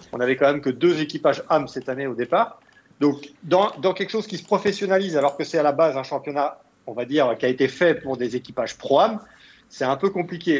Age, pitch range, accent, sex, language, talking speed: 40-59, 130-175 Hz, French, male, French, 245 wpm